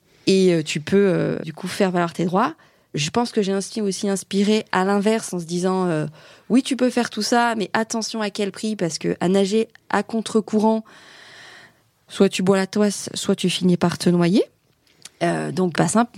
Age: 20-39